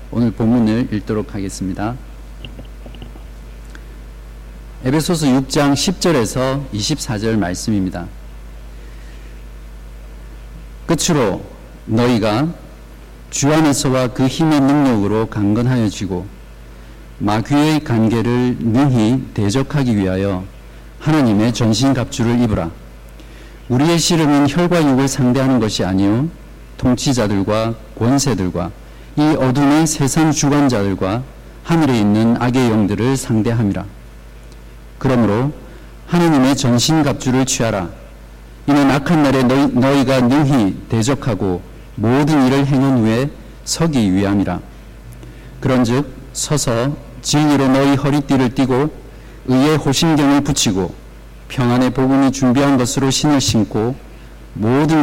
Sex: male